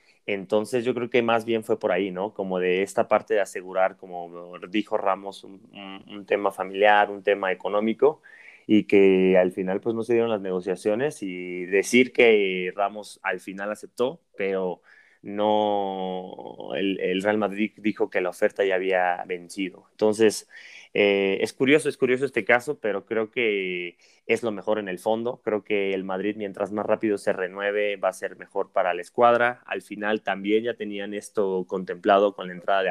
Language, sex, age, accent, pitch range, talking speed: Spanish, male, 20-39, Mexican, 95-110 Hz, 185 wpm